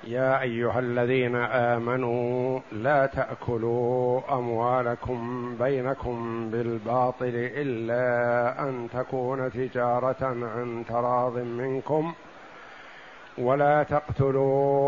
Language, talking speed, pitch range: Arabic, 75 wpm, 125-140 Hz